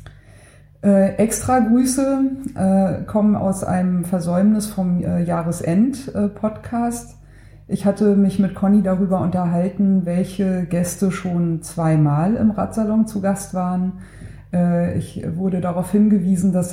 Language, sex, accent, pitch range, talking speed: German, female, German, 170-205 Hz, 115 wpm